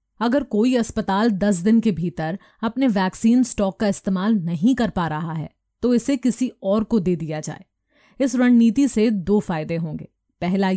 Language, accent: Hindi, native